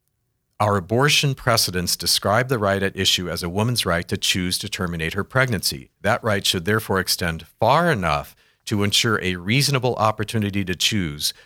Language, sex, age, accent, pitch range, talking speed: English, male, 40-59, American, 90-115 Hz, 170 wpm